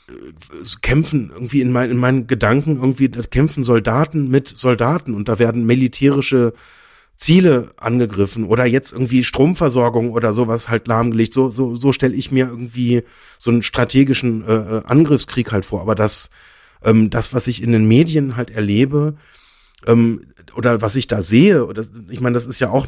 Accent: German